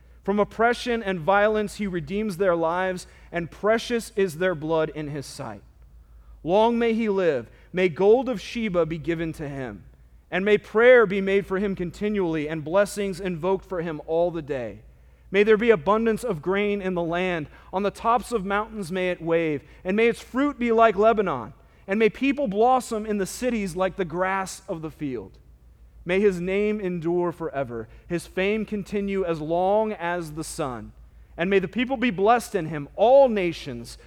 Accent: American